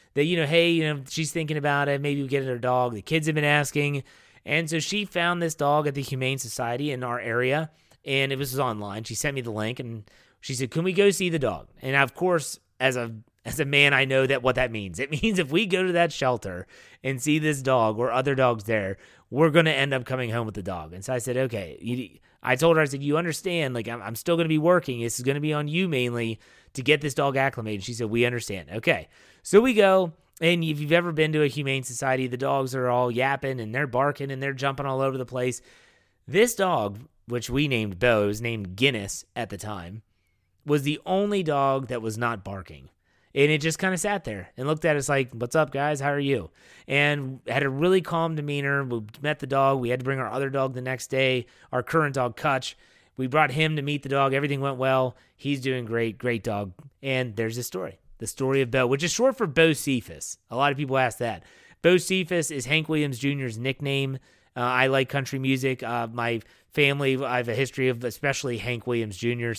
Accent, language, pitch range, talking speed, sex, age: American, English, 120-150 Hz, 240 wpm, male, 30-49